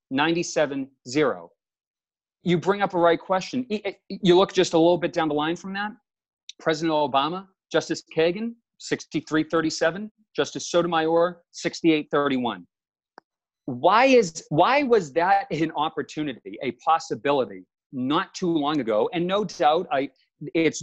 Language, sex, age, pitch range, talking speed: English, male, 40-59, 135-175 Hz, 150 wpm